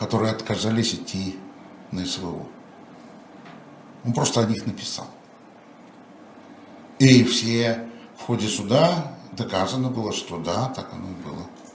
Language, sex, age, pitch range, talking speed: Russian, male, 60-79, 95-120 Hz, 115 wpm